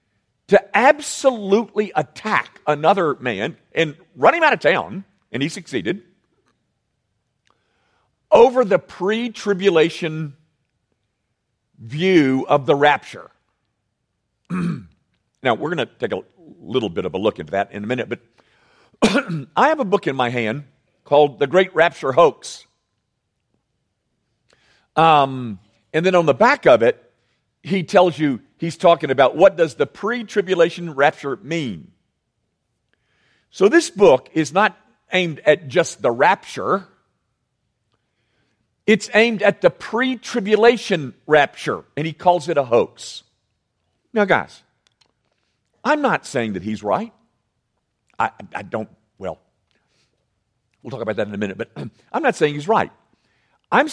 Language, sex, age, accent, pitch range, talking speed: English, male, 50-69, American, 125-205 Hz, 130 wpm